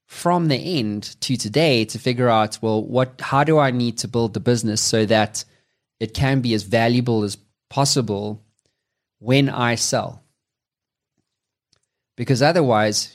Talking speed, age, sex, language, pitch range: 145 wpm, 20-39, male, English, 110-135 Hz